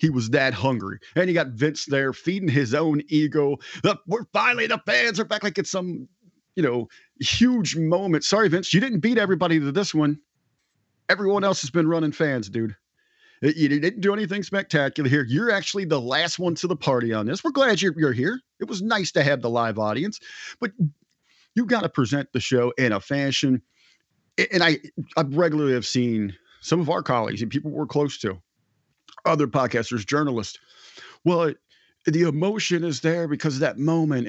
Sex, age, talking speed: male, 40-59, 190 wpm